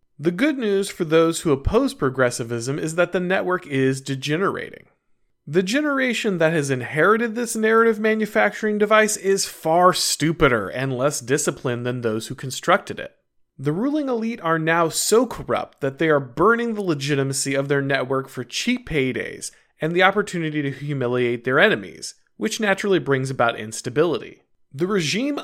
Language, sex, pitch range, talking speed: English, male, 135-200 Hz, 160 wpm